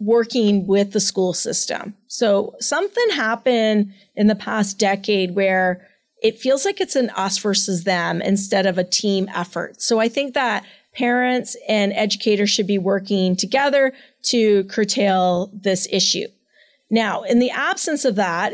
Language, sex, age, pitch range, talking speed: English, female, 30-49, 195-230 Hz, 150 wpm